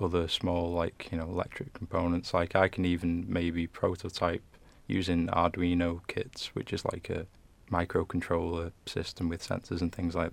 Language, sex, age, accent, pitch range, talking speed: English, male, 20-39, British, 85-90 Hz, 155 wpm